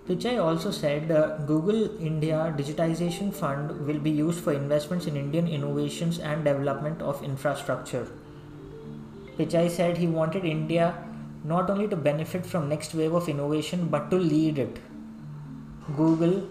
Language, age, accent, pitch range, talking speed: English, 20-39, Indian, 140-170 Hz, 145 wpm